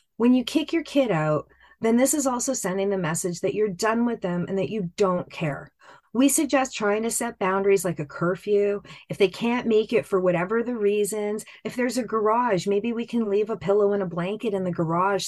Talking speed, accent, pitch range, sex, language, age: 225 wpm, American, 185-230 Hz, female, English, 30-49